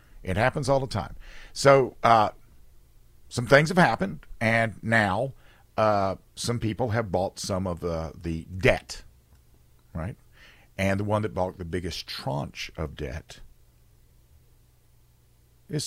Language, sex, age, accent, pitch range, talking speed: English, male, 50-69, American, 85-120 Hz, 130 wpm